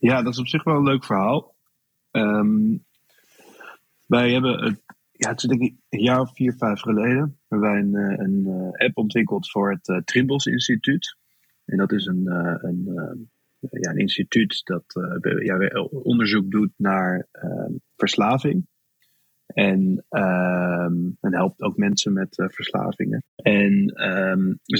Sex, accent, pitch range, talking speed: male, Dutch, 95-130 Hz, 150 wpm